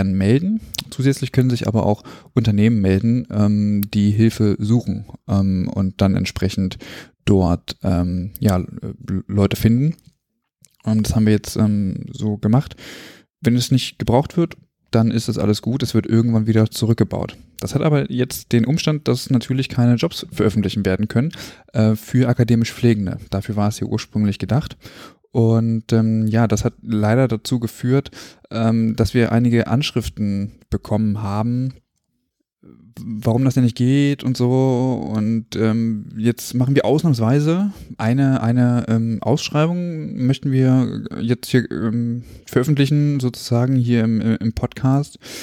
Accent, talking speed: German, 135 wpm